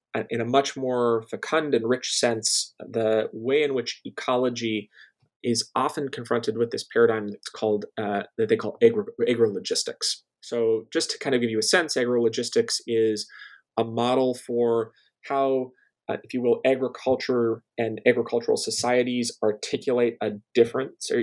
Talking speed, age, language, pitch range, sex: 145 wpm, 20-39, English, 115-130 Hz, male